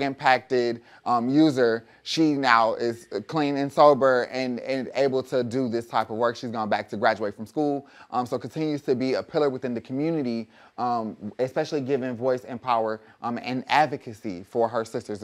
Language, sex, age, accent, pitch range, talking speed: English, male, 30-49, American, 115-135 Hz, 185 wpm